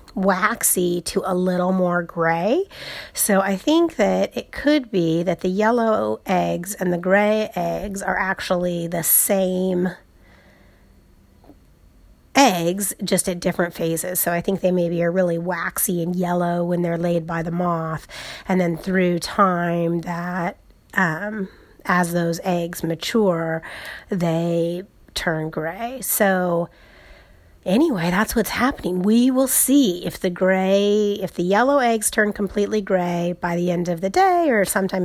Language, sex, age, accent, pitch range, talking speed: English, female, 30-49, American, 175-220 Hz, 145 wpm